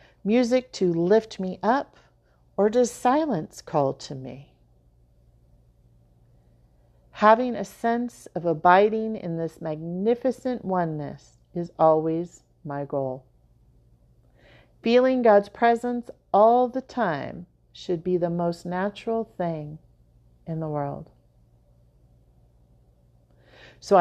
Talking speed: 100 wpm